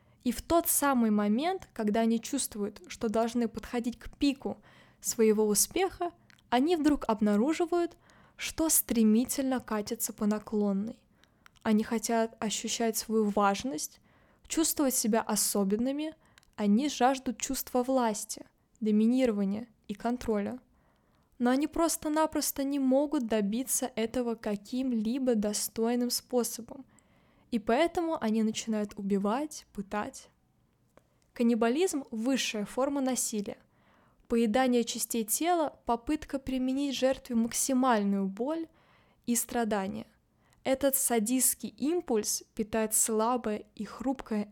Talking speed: 100 wpm